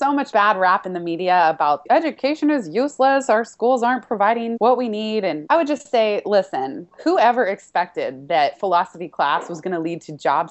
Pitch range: 170-230 Hz